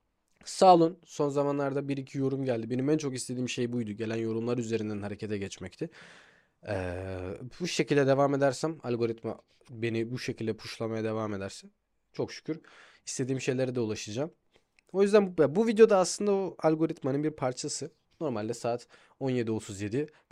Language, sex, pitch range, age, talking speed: Turkish, male, 115-185 Hz, 20-39, 150 wpm